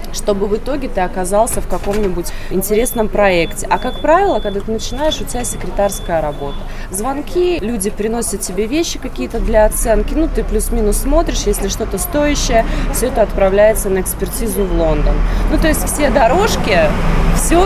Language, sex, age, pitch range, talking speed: Russian, female, 20-39, 185-230 Hz, 160 wpm